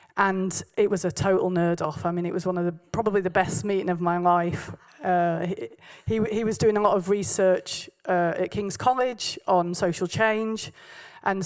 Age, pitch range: 30-49, 175-205 Hz